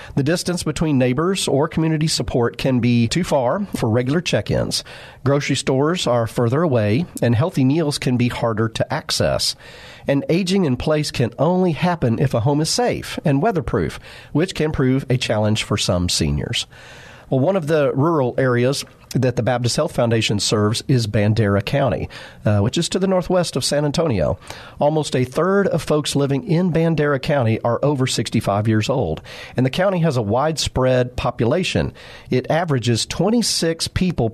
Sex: male